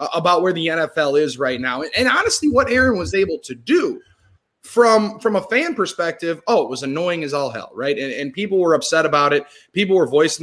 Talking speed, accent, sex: 220 wpm, American, male